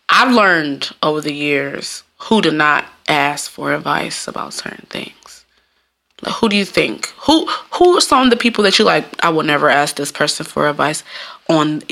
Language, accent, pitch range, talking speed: English, American, 155-210 Hz, 190 wpm